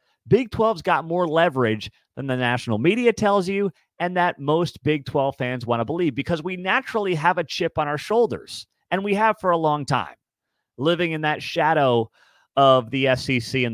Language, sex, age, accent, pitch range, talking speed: English, male, 30-49, American, 120-170 Hz, 190 wpm